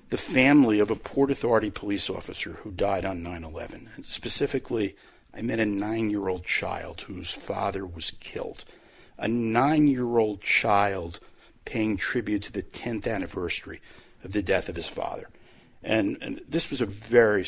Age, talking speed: 50-69, 150 wpm